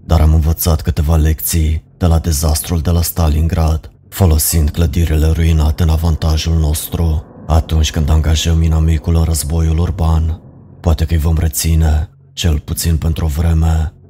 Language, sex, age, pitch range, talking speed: Romanian, male, 30-49, 80-85 Hz, 145 wpm